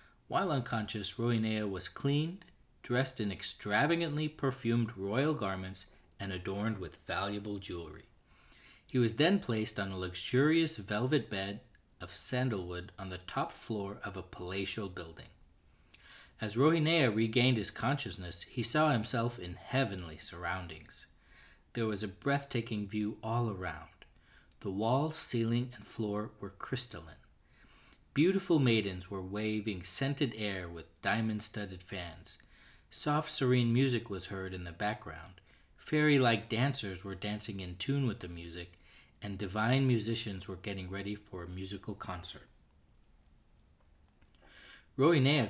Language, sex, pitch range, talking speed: English, male, 95-125 Hz, 130 wpm